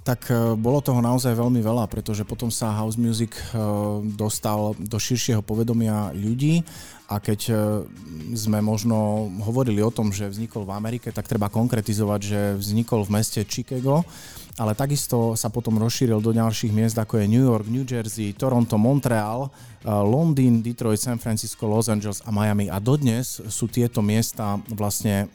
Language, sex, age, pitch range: Slovak, male, 30-49, 105-120 Hz